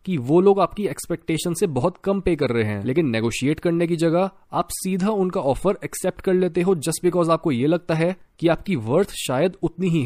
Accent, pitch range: native, 130-180 Hz